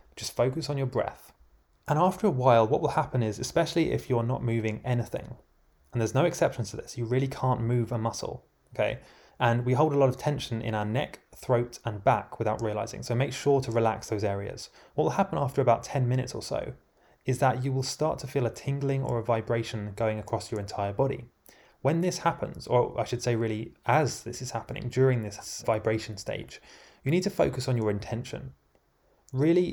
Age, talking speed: 20-39, 210 wpm